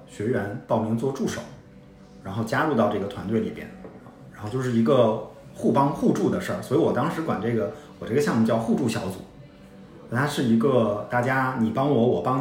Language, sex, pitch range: Chinese, male, 110-140 Hz